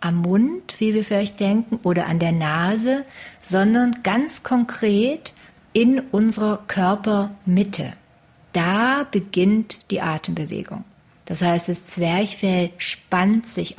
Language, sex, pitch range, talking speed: German, female, 180-220 Hz, 115 wpm